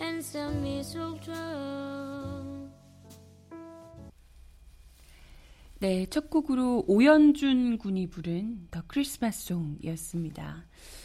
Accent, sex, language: native, female, Korean